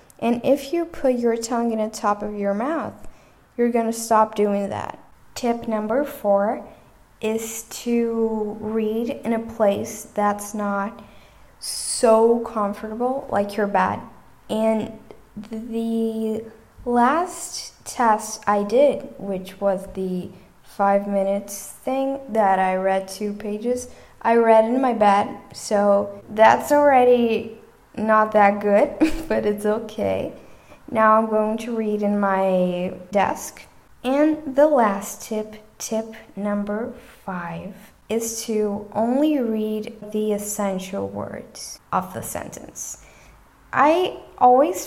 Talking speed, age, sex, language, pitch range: 125 wpm, 10-29, female, English, 205-235 Hz